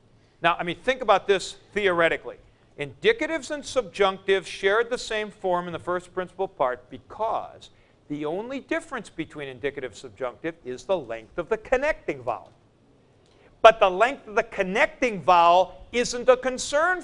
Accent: American